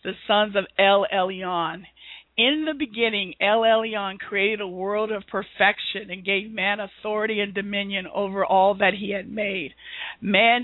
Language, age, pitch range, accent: English, 50-69, 195-230 Hz, American